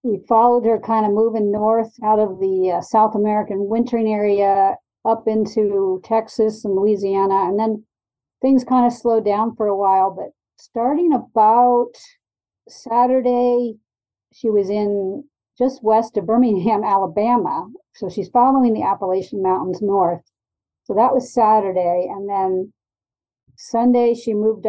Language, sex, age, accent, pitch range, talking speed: English, female, 50-69, American, 195-230 Hz, 140 wpm